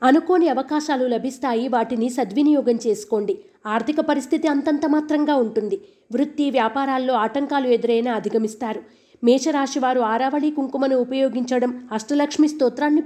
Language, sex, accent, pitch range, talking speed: Telugu, female, native, 240-295 Hz, 100 wpm